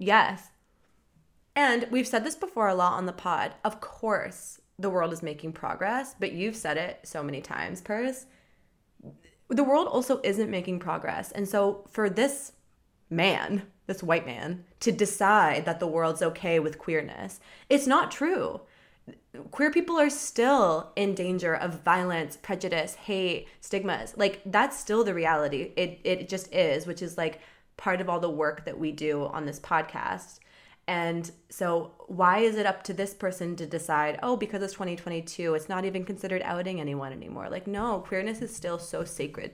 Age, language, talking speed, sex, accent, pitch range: 20-39, English, 175 wpm, female, American, 160-210 Hz